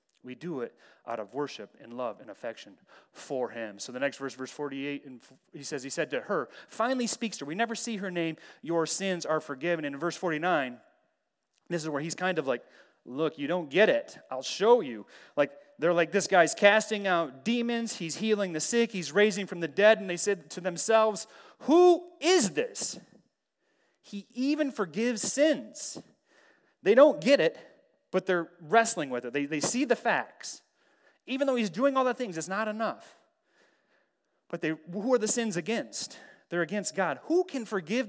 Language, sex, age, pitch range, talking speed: English, male, 30-49, 155-230 Hz, 195 wpm